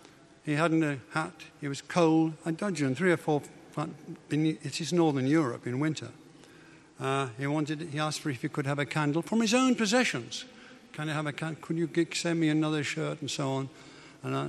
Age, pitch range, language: 60-79, 145-175 Hz, English